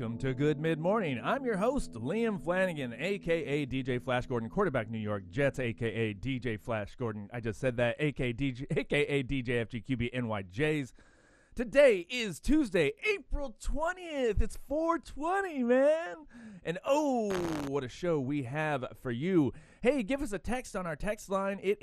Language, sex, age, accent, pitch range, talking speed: English, male, 30-49, American, 120-200 Hz, 160 wpm